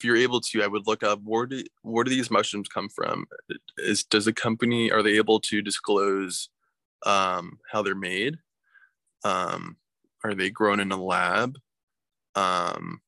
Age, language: 20-39, English